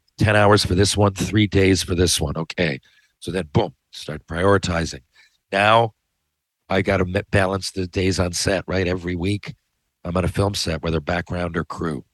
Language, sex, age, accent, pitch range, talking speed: English, male, 50-69, American, 85-105 Hz, 185 wpm